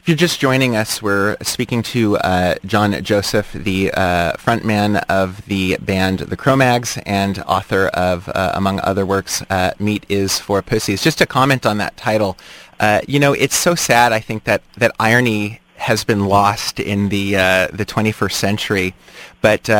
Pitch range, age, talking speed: 100-115 Hz, 30-49, 175 wpm